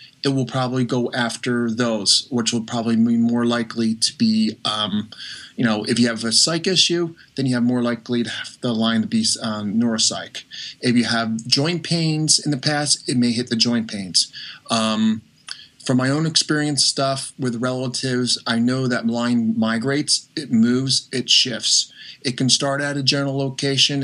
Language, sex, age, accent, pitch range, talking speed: English, male, 30-49, American, 115-130 Hz, 185 wpm